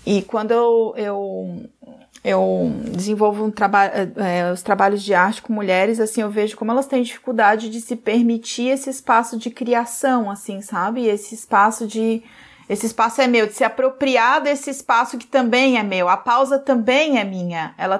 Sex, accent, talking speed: female, Brazilian, 175 wpm